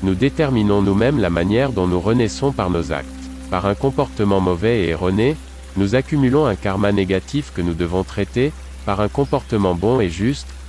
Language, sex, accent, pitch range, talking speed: French, male, French, 90-120 Hz, 180 wpm